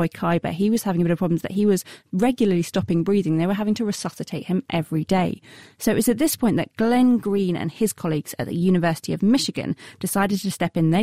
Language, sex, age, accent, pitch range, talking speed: English, female, 30-49, British, 165-205 Hz, 240 wpm